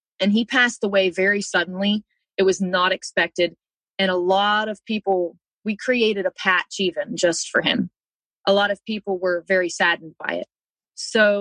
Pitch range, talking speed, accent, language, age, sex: 190-230 Hz, 175 wpm, American, English, 30-49, female